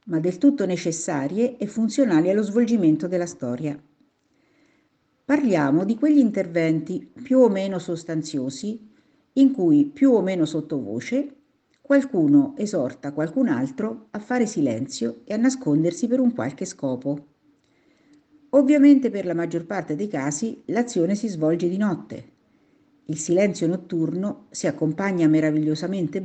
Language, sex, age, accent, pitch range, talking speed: Italian, female, 50-69, native, 160-265 Hz, 130 wpm